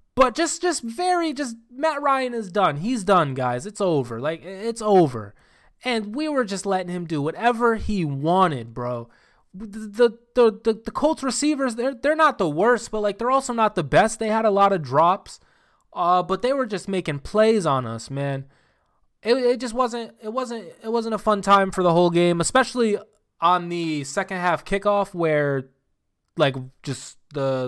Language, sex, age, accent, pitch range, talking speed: English, male, 20-39, American, 140-215 Hz, 190 wpm